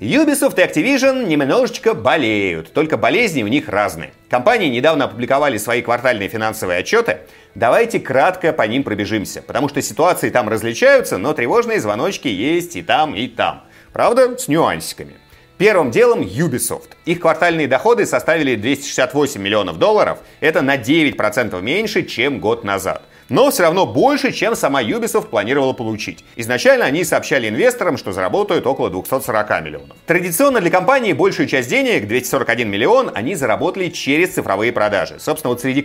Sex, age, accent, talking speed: male, 30-49, native, 150 wpm